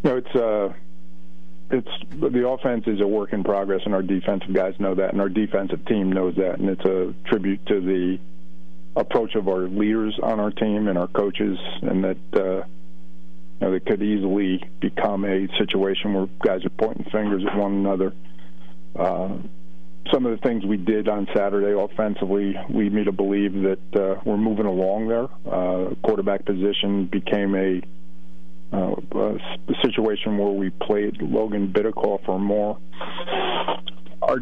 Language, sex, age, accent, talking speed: English, male, 40-59, American, 165 wpm